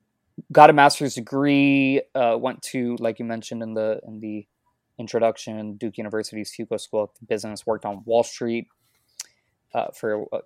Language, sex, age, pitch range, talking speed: English, male, 20-39, 105-115 Hz, 160 wpm